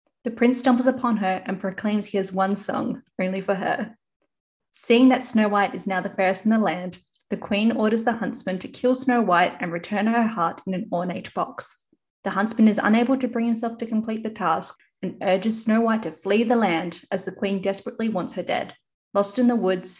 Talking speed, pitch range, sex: 215 wpm, 190-235 Hz, female